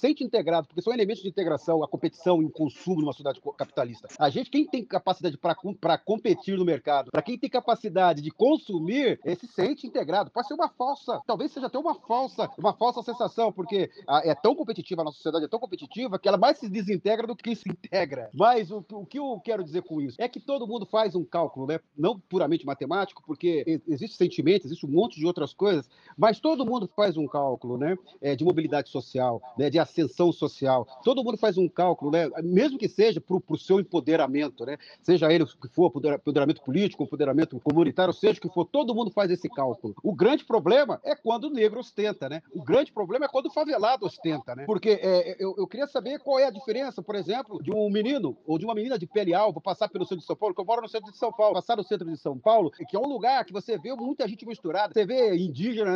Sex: male